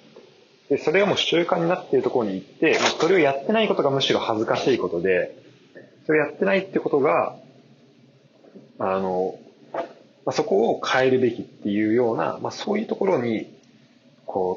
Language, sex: Japanese, male